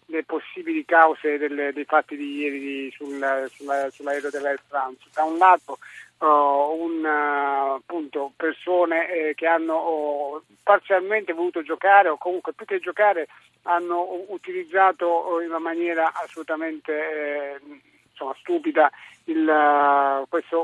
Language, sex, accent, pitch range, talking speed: Italian, male, native, 150-185 Hz, 130 wpm